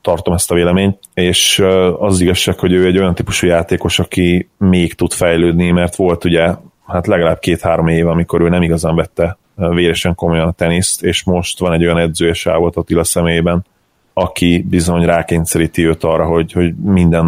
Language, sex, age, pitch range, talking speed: Hungarian, male, 30-49, 85-90 Hz, 175 wpm